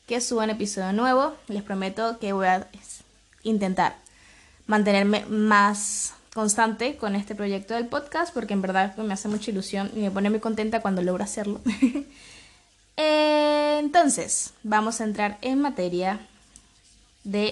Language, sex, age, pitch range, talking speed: Spanish, female, 20-39, 185-240 Hz, 145 wpm